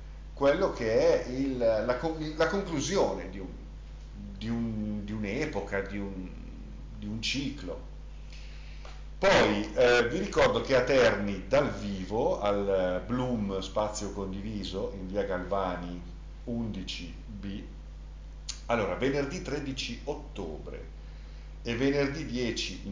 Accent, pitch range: native, 80-115 Hz